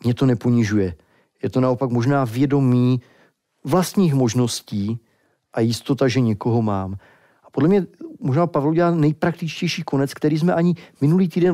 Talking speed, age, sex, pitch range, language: 145 wpm, 40-59, male, 115-150 Hz, Czech